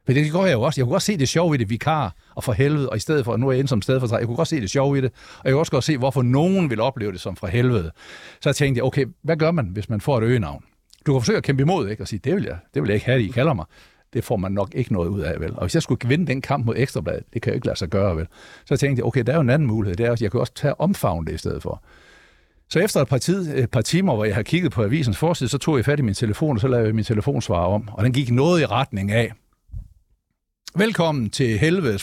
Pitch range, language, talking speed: 110-150 Hz, Danish, 325 wpm